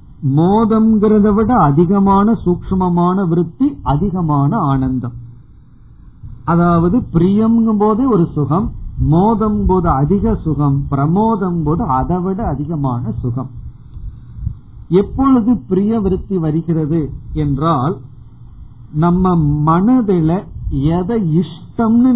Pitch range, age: 135-190 Hz, 50-69